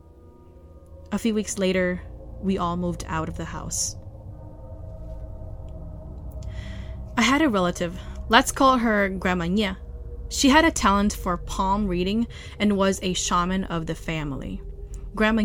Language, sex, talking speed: English, female, 135 wpm